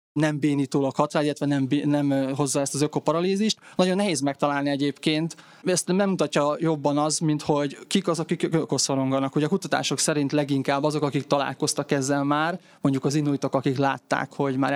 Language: Hungarian